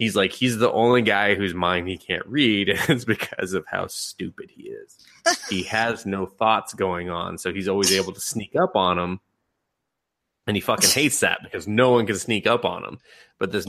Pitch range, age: 95-115 Hz, 20-39